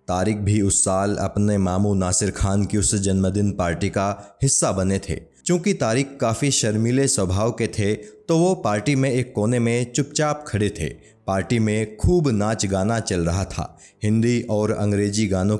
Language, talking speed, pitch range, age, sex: Hindi, 175 wpm, 100-125 Hz, 20-39, male